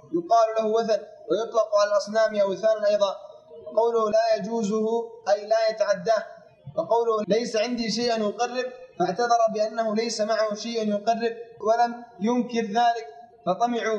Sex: male